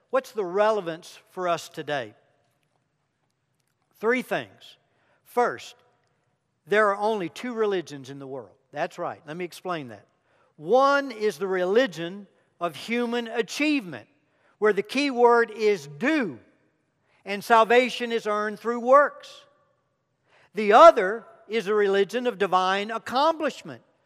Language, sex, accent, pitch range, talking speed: English, male, American, 200-265 Hz, 125 wpm